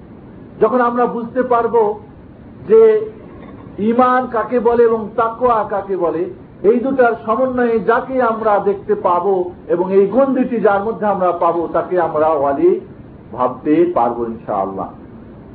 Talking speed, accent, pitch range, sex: 115 wpm, native, 165-225 Hz, male